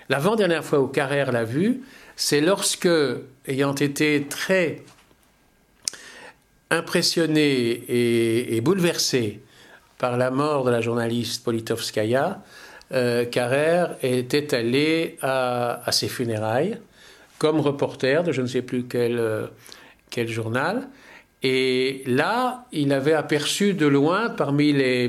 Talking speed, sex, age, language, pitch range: 115 wpm, male, 50-69, French, 120-150 Hz